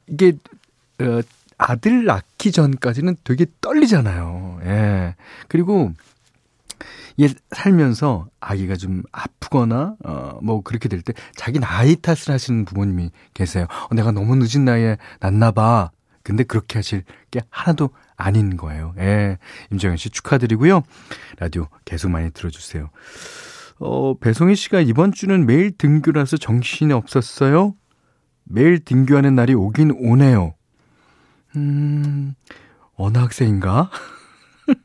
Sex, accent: male, native